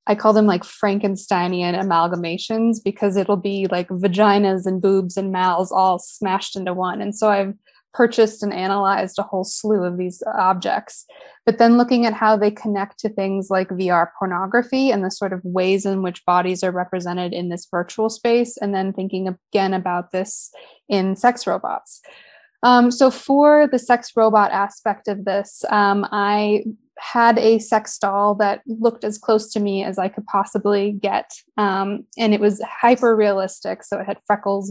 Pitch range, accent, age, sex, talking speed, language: 190-220 Hz, American, 20-39, female, 175 wpm, English